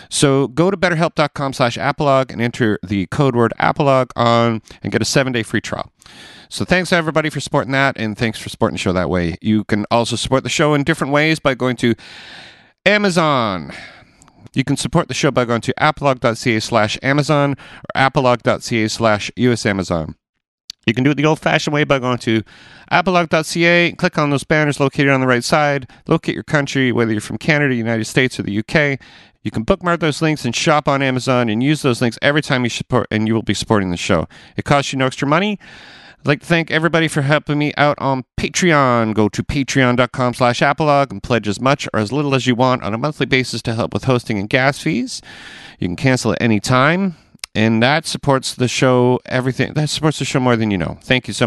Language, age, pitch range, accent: English, 40-59, 115-150 Hz, American